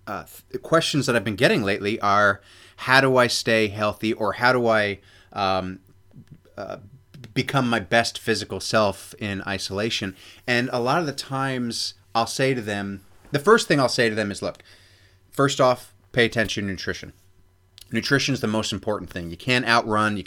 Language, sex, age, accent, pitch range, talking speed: English, male, 30-49, American, 95-130 Hz, 185 wpm